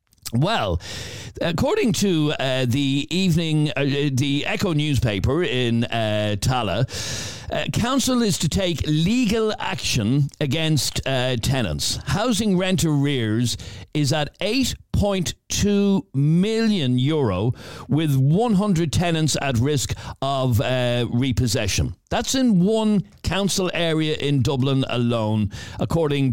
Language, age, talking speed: English, 50-69, 110 wpm